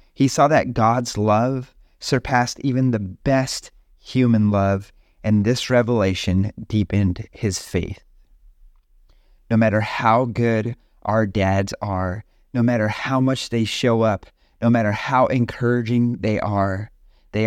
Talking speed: 130 wpm